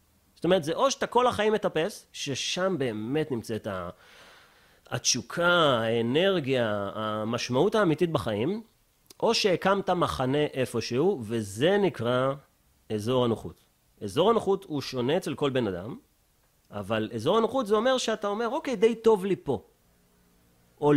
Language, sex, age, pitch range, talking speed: Hebrew, male, 30-49, 110-170 Hz, 130 wpm